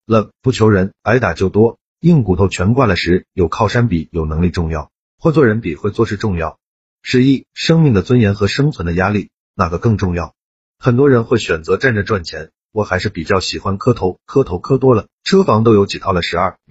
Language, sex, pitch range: Chinese, male, 95-130 Hz